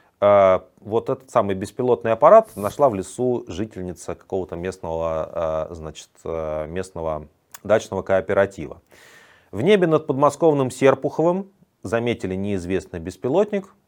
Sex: male